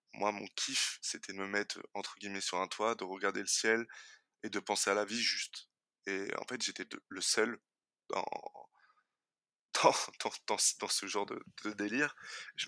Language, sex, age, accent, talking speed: French, male, 20-39, French, 190 wpm